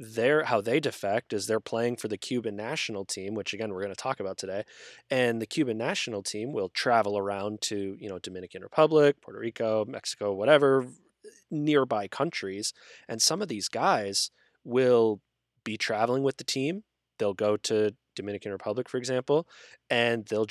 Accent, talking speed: American, 170 wpm